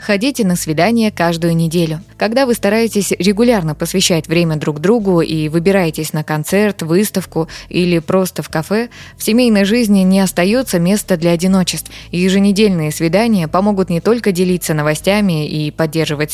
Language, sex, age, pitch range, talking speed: Russian, female, 20-39, 165-205 Hz, 145 wpm